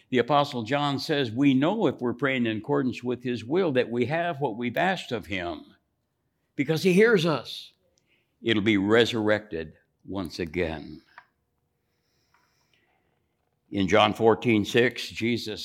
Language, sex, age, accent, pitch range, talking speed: English, male, 60-79, American, 105-130 Hz, 140 wpm